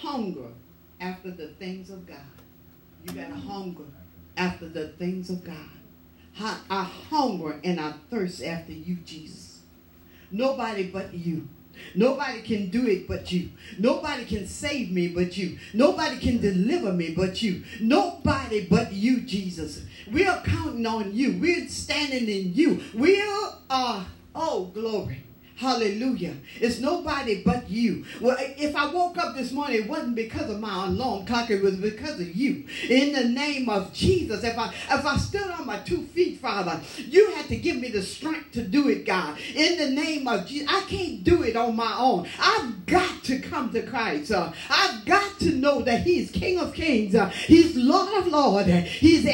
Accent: American